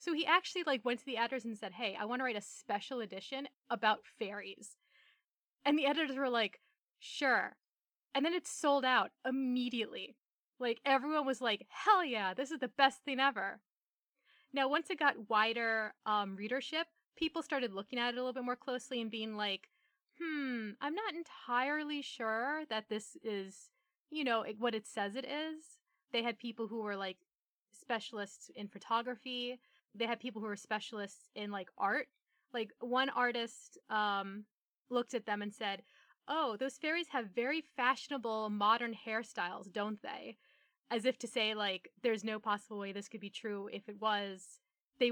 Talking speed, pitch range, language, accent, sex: 175 wpm, 210-270 Hz, English, American, female